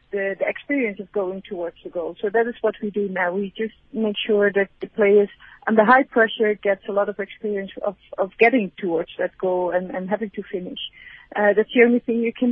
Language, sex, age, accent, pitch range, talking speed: English, female, 40-59, Dutch, 205-245 Hz, 230 wpm